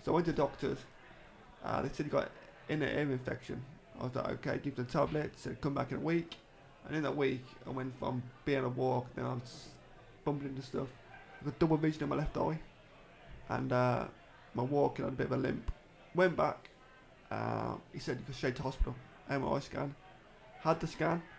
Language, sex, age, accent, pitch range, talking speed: English, male, 20-39, British, 130-145 Hz, 215 wpm